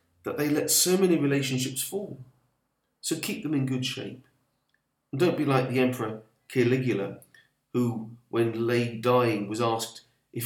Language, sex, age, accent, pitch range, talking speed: English, male, 40-59, British, 115-140 Hz, 155 wpm